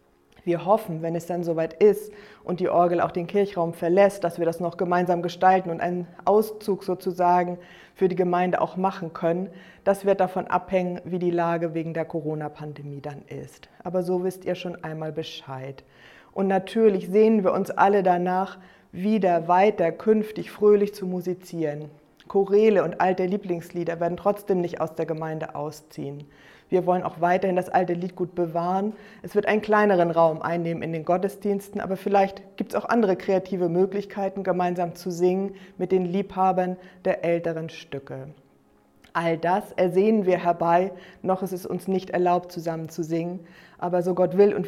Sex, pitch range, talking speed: female, 170-195 Hz, 170 wpm